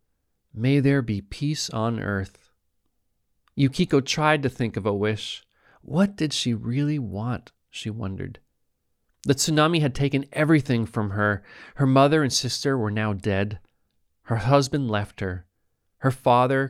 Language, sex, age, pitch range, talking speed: English, male, 40-59, 100-135 Hz, 145 wpm